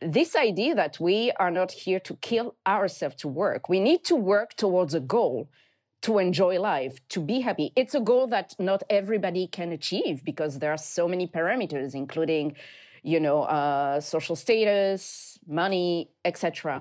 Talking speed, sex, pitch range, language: 170 wpm, female, 175-265 Hz, English